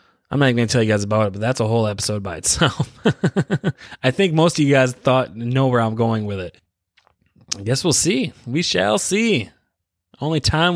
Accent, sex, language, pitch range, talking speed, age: American, male, English, 105-140 Hz, 210 wpm, 20-39